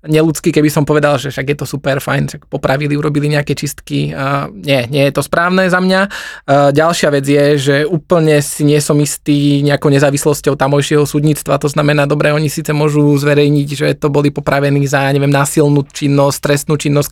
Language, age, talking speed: Slovak, 20-39, 180 wpm